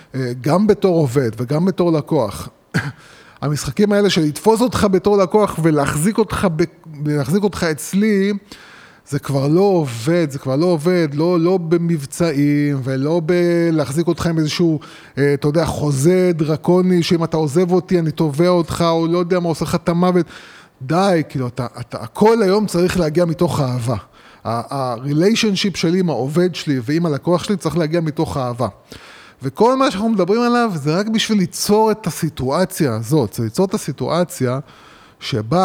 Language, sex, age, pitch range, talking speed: Hebrew, male, 20-39, 145-190 Hz, 150 wpm